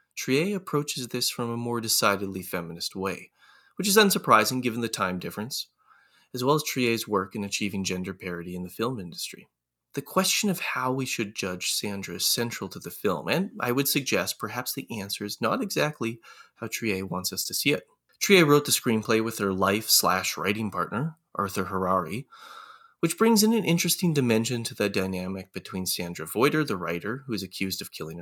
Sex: male